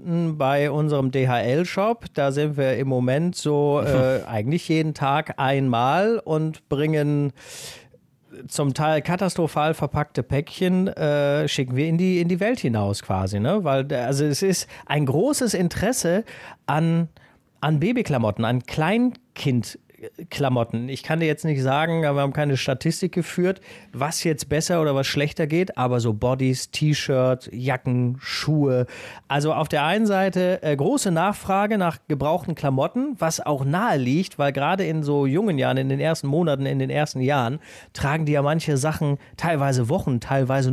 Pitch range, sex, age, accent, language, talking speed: 130-165 Hz, male, 40-59, German, German, 150 wpm